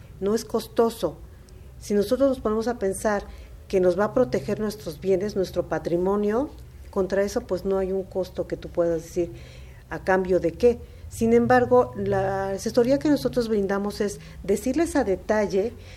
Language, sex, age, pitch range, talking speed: Spanish, female, 40-59, 175-215 Hz, 165 wpm